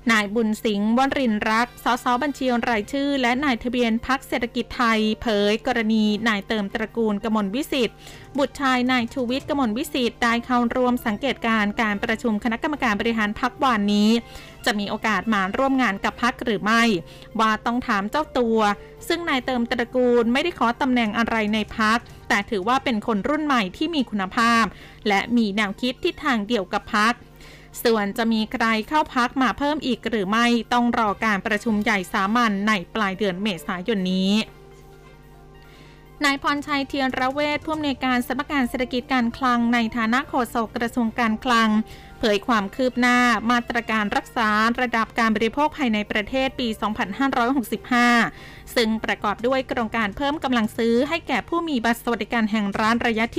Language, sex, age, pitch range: Thai, female, 20-39, 220-255 Hz